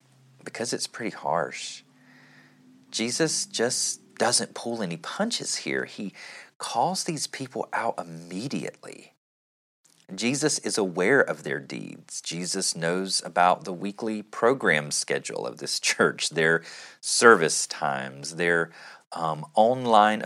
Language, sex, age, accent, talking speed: English, male, 30-49, American, 115 wpm